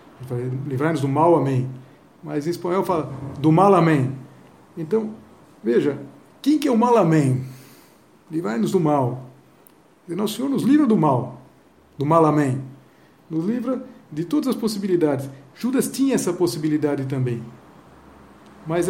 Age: 60-79